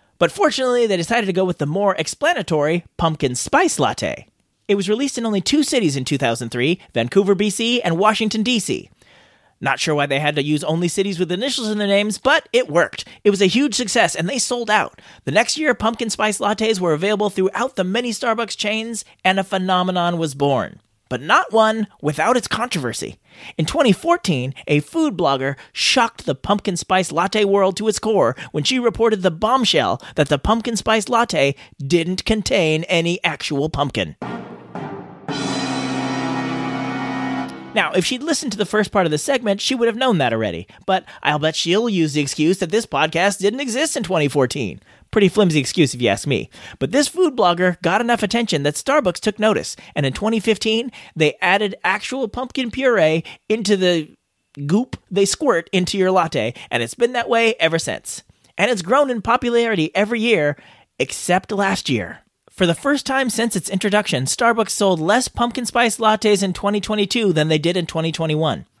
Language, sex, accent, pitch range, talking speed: English, male, American, 160-230 Hz, 180 wpm